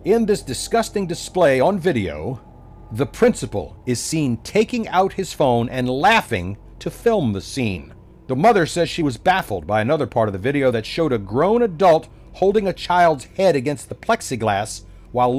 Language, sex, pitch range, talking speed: English, male, 120-205 Hz, 175 wpm